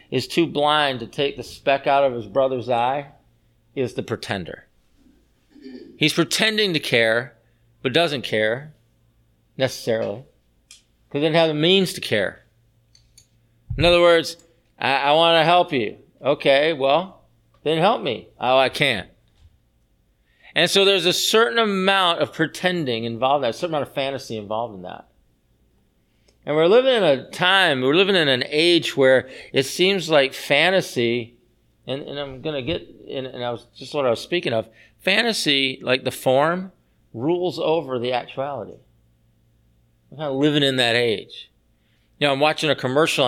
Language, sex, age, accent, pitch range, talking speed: English, male, 40-59, American, 115-160 Hz, 165 wpm